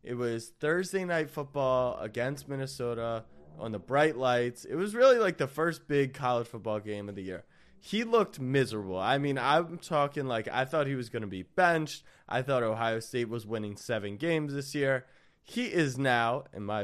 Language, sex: English, male